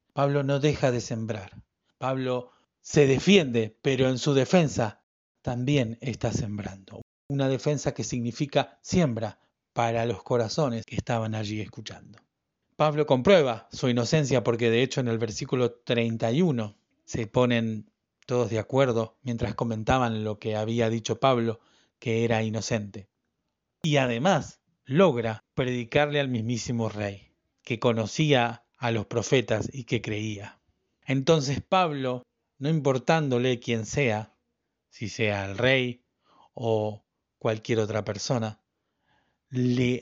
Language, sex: Spanish, male